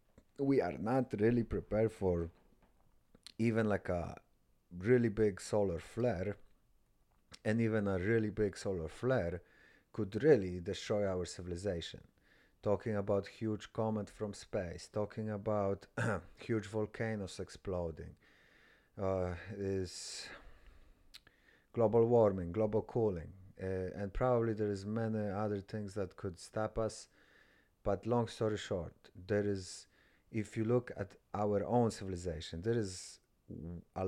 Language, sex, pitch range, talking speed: English, male, 95-110 Hz, 125 wpm